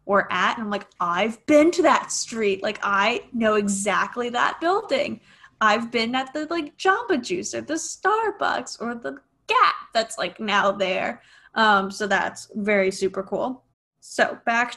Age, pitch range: 10-29, 205-255 Hz